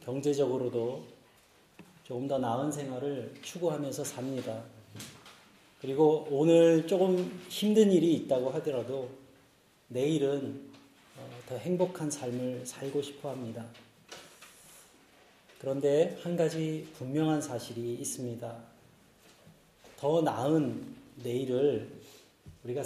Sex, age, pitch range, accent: male, 30-49, 125-165 Hz, native